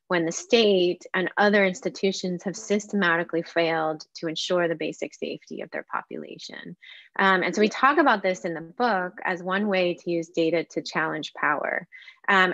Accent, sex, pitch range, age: American, female, 170-205 Hz, 20-39